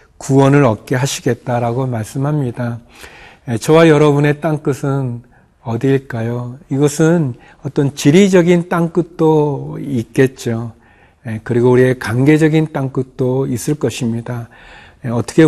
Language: Korean